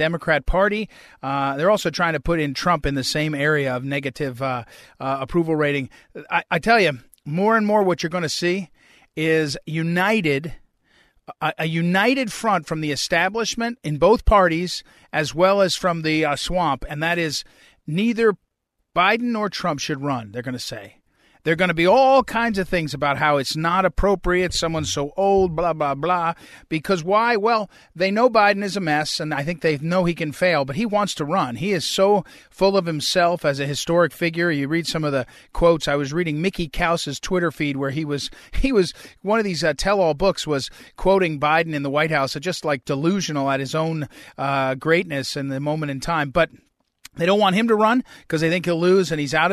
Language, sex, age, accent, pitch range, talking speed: English, male, 40-59, American, 150-190 Hz, 215 wpm